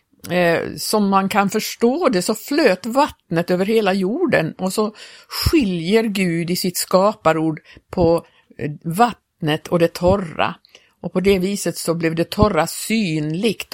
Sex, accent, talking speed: female, native, 140 wpm